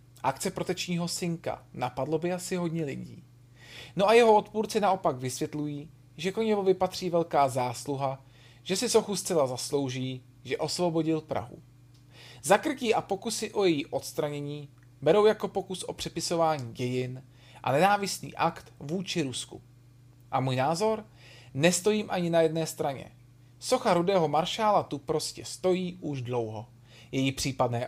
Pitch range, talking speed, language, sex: 130-190 Hz, 135 wpm, Czech, male